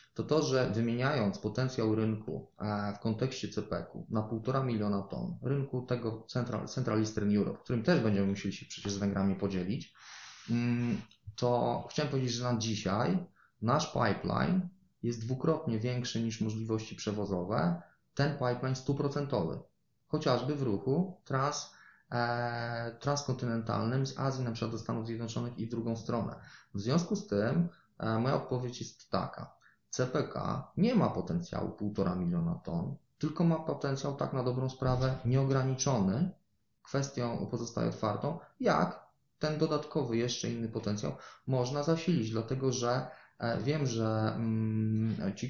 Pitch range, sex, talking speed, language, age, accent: 110-130 Hz, male, 130 wpm, Polish, 20-39, native